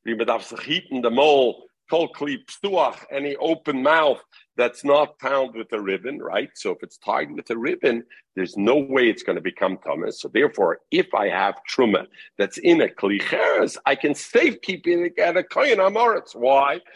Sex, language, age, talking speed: male, English, 50-69, 155 wpm